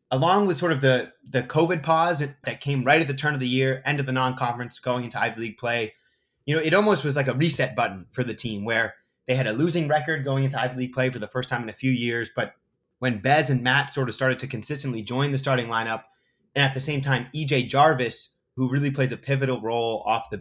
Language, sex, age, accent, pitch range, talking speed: English, male, 30-49, American, 120-150 Hz, 255 wpm